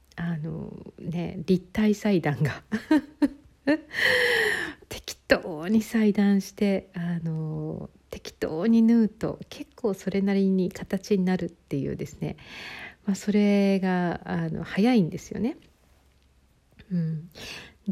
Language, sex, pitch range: Japanese, female, 170-220 Hz